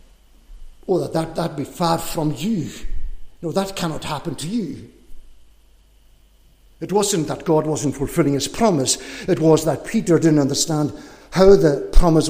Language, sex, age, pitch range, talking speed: English, male, 60-79, 115-155 Hz, 150 wpm